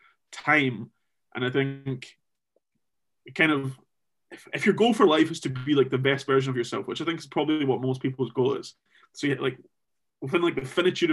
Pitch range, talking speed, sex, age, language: 135-160 Hz, 205 wpm, male, 20-39, English